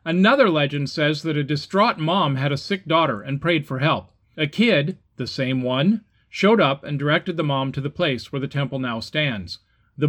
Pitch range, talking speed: 125-175 Hz, 210 wpm